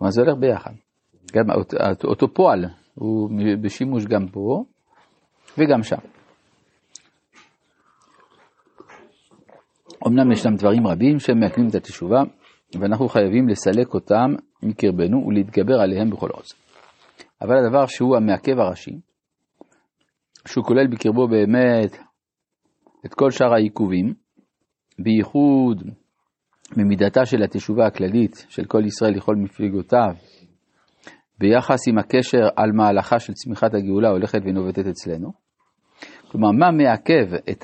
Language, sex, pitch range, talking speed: Hebrew, male, 100-120 Hz, 110 wpm